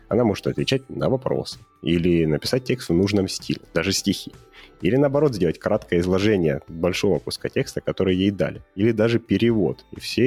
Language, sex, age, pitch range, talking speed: Russian, male, 30-49, 85-110 Hz, 170 wpm